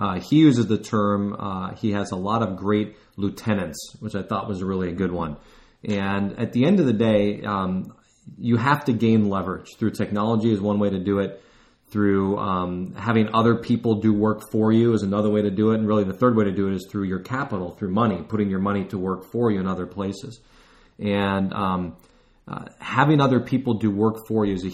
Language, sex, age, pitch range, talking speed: English, male, 30-49, 100-115 Hz, 225 wpm